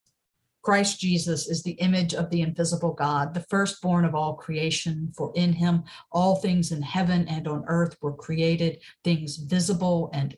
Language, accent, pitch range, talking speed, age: English, American, 165-200 Hz, 170 wpm, 50-69